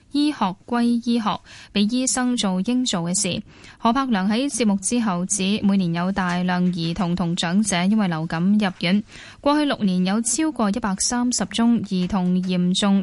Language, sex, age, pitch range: Chinese, female, 10-29, 180-220 Hz